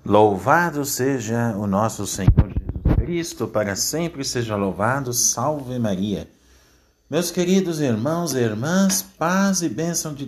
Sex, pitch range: male, 95-145 Hz